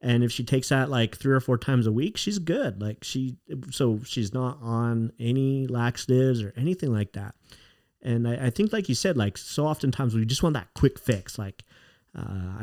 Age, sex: 30-49, male